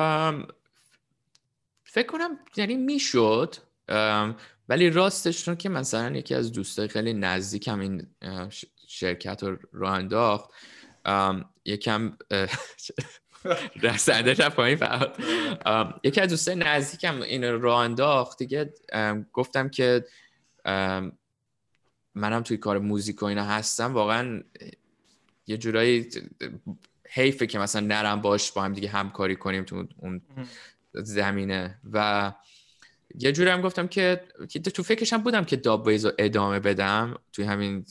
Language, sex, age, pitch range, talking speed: Persian, male, 10-29, 100-135 Hz, 115 wpm